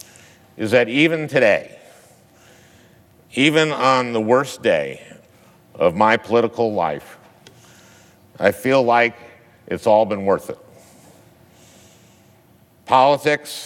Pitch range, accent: 105-125 Hz, American